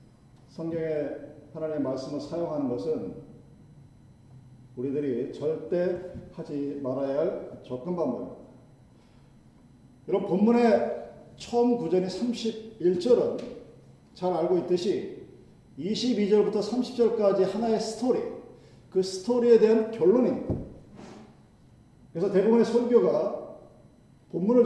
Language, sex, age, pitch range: Korean, male, 40-59, 170-235 Hz